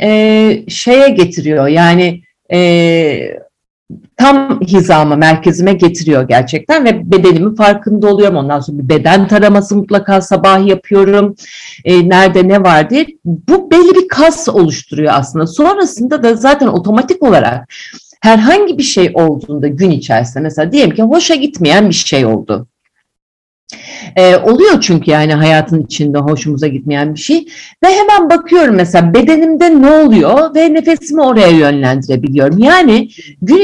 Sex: female